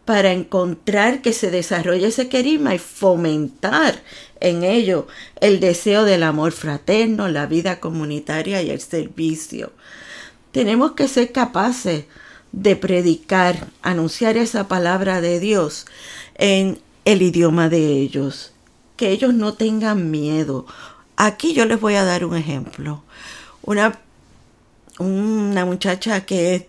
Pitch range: 160-215 Hz